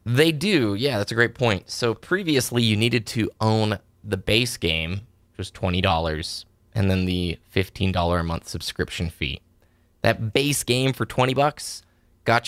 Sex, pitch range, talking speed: male, 90-115 Hz, 165 wpm